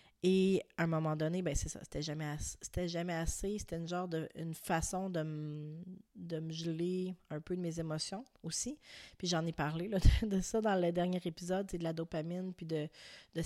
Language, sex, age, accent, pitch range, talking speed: French, female, 30-49, Canadian, 165-195 Hz, 225 wpm